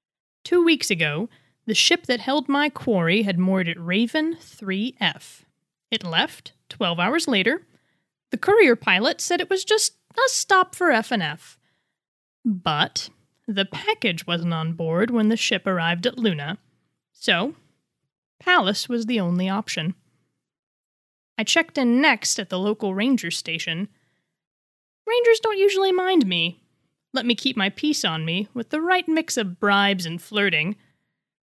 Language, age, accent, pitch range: English, 20-39, American, 180-255 Hz